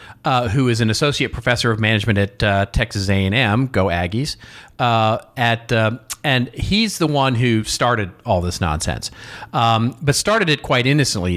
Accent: American